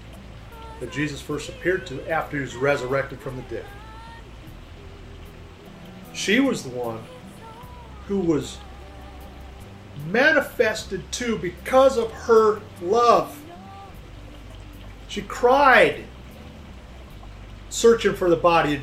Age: 40-59